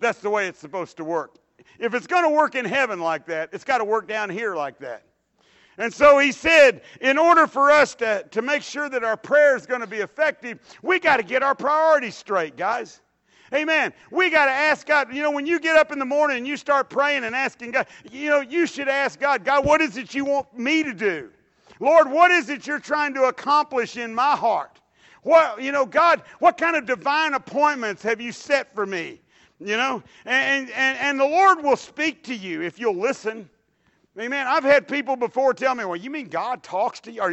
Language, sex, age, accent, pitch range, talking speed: English, male, 50-69, American, 220-295 Hz, 230 wpm